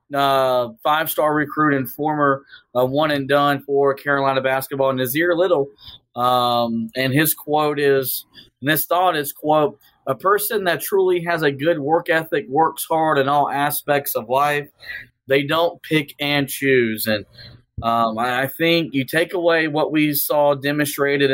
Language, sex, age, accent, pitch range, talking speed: English, male, 20-39, American, 130-150 Hz, 150 wpm